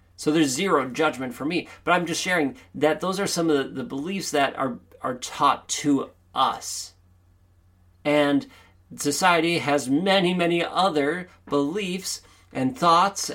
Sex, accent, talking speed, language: male, American, 150 wpm, English